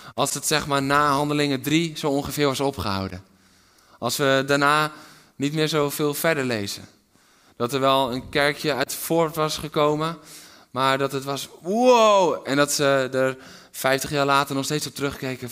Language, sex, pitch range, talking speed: Dutch, male, 125-160 Hz, 170 wpm